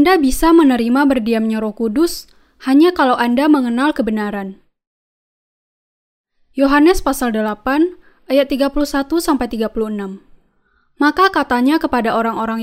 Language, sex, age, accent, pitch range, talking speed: Indonesian, female, 10-29, native, 225-295 Hz, 95 wpm